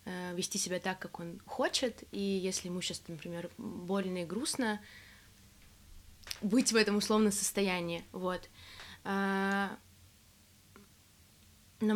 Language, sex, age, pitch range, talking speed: Russian, female, 20-39, 175-215 Hz, 105 wpm